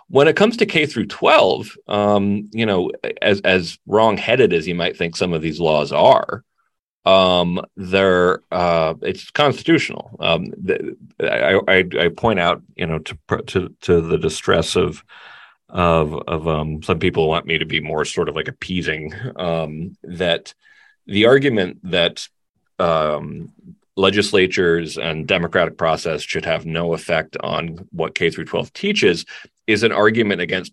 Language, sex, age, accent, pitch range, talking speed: English, male, 40-59, American, 85-115 Hz, 155 wpm